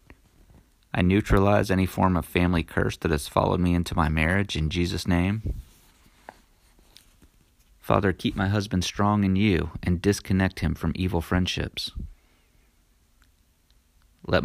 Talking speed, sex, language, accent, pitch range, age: 130 wpm, male, English, American, 80-95 Hz, 30-49